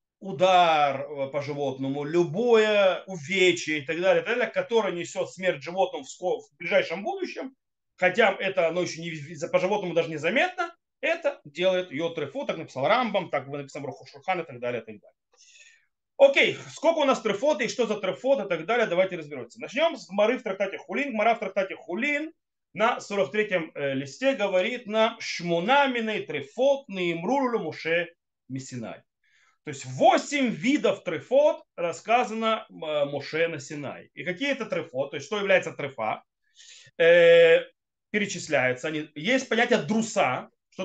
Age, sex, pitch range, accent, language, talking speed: 30-49, male, 165-255 Hz, native, Russian, 150 wpm